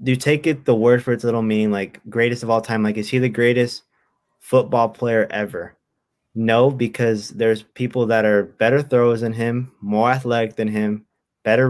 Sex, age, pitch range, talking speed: male, 20-39, 105-120 Hz, 195 wpm